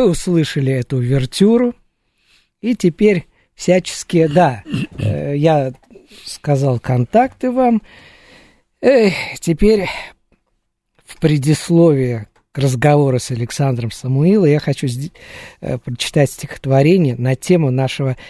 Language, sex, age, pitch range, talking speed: Russian, male, 50-69, 135-180 Hz, 90 wpm